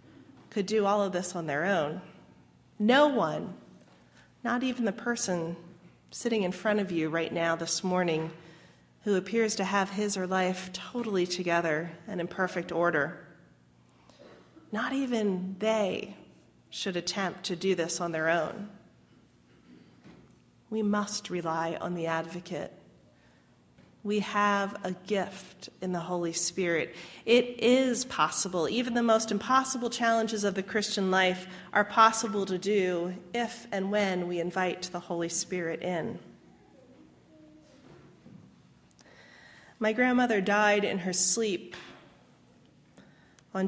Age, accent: 30-49, American